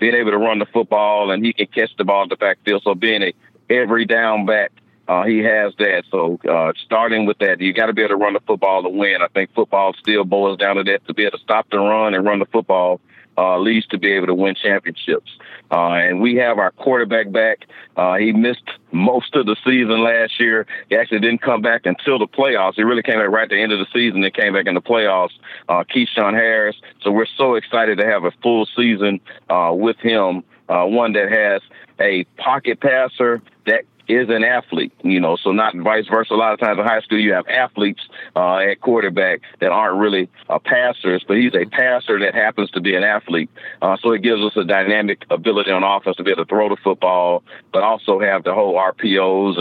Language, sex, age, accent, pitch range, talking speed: English, male, 50-69, American, 95-115 Hz, 230 wpm